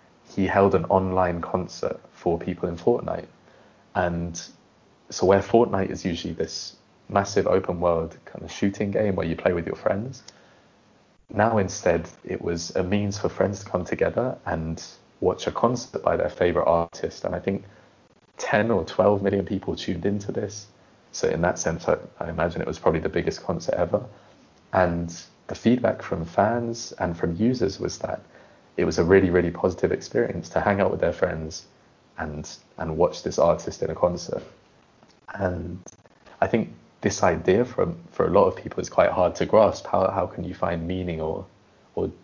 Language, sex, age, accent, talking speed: English, male, 20-39, British, 180 wpm